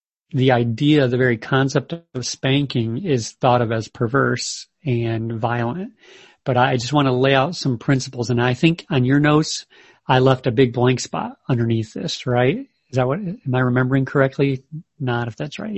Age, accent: 40-59, American